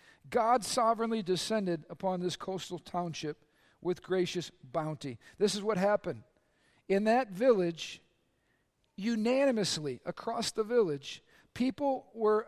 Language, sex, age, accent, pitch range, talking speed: English, male, 50-69, American, 190-235 Hz, 110 wpm